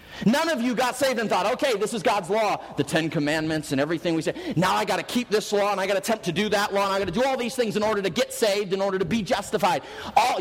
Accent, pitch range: American, 195-265 Hz